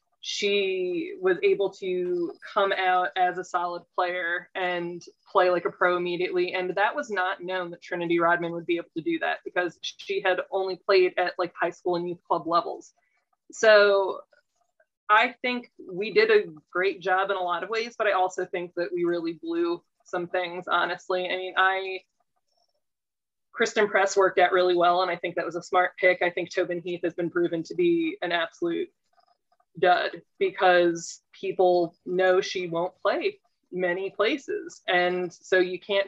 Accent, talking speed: American, 180 wpm